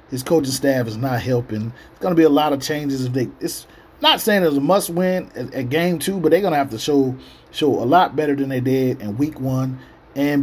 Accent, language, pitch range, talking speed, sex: American, English, 140-175 Hz, 255 wpm, male